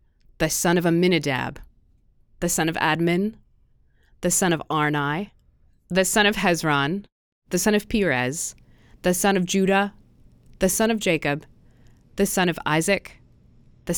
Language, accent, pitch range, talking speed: English, American, 135-195 Hz, 140 wpm